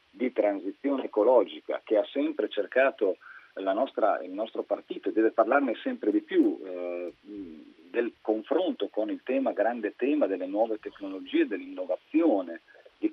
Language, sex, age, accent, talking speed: Italian, male, 40-59, native, 140 wpm